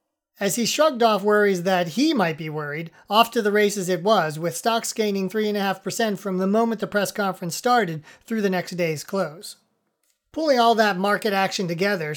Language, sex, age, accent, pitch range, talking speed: English, male, 40-59, American, 185-230 Hz, 185 wpm